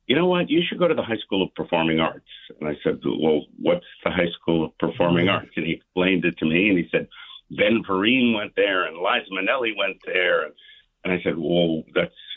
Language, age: English, 50-69